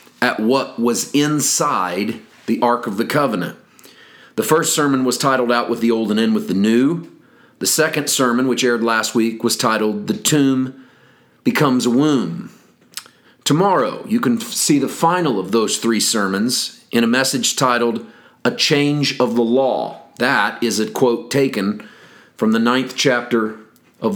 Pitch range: 115-140 Hz